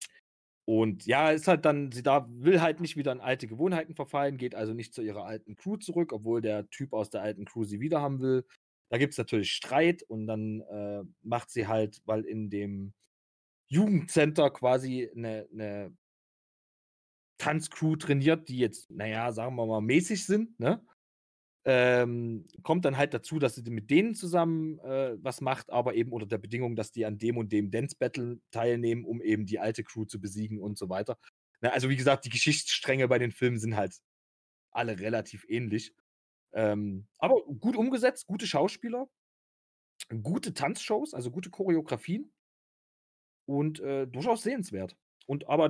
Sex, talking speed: male, 170 wpm